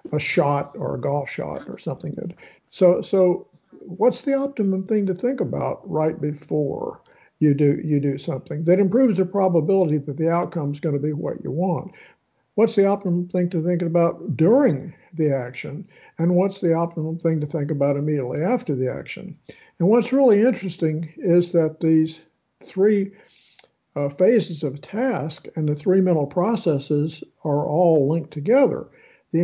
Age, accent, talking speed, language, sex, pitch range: 60-79, American, 165 wpm, English, male, 150-190 Hz